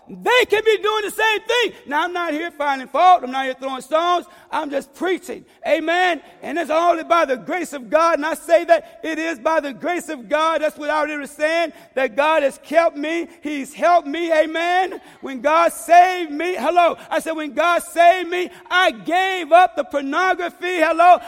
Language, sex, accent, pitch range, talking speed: English, male, American, 280-365 Hz, 205 wpm